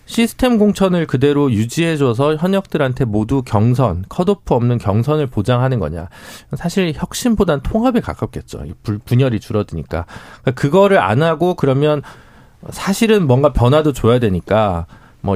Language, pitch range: Korean, 105-155 Hz